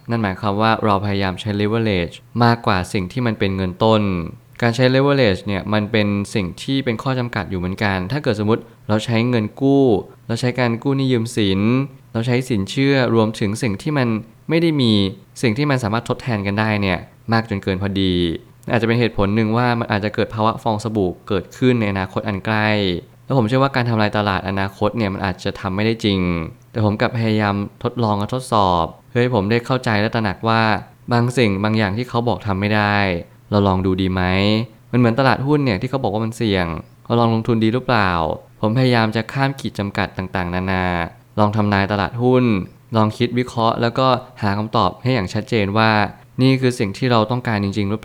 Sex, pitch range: male, 100-120 Hz